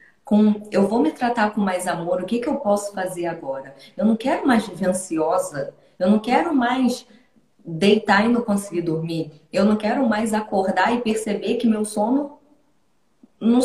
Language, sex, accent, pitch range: Portuguese, female, Brazilian, 180-245 Hz